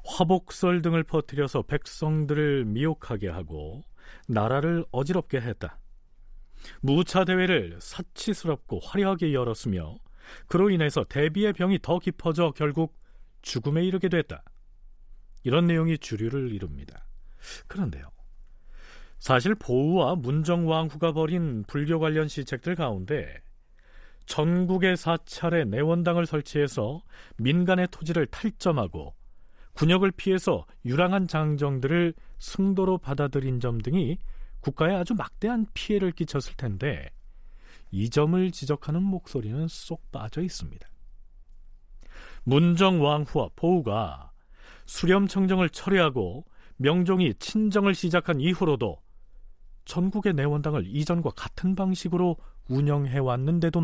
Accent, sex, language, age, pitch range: native, male, Korean, 40-59, 125-180 Hz